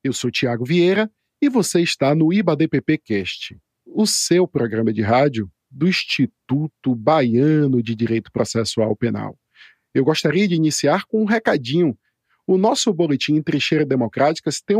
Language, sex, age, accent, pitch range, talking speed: Portuguese, male, 50-69, Brazilian, 135-200 Hz, 145 wpm